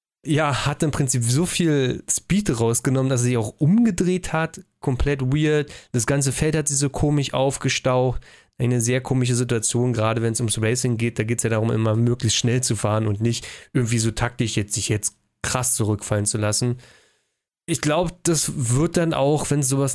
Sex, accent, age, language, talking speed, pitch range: male, German, 20-39, German, 190 wpm, 110-135 Hz